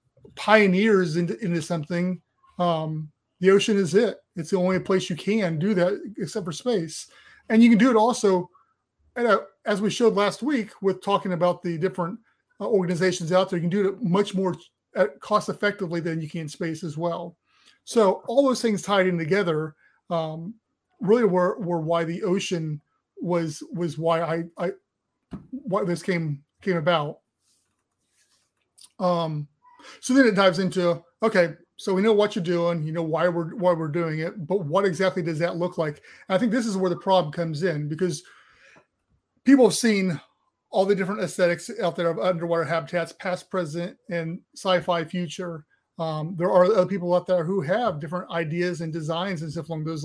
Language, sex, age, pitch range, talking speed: English, male, 30-49, 170-205 Hz, 180 wpm